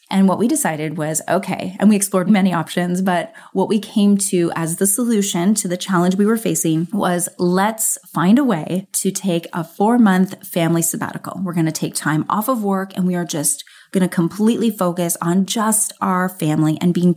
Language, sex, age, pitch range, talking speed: English, female, 30-49, 180-220 Hz, 205 wpm